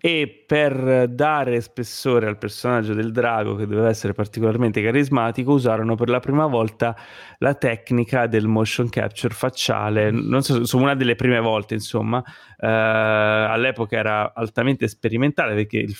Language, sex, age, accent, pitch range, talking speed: Italian, male, 30-49, native, 105-125 Hz, 150 wpm